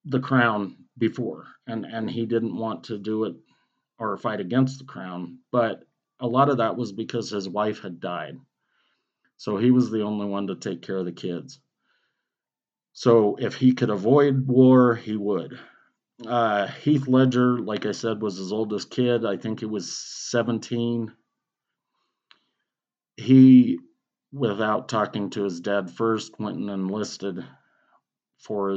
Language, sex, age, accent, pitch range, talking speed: English, male, 40-59, American, 105-125 Hz, 150 wpm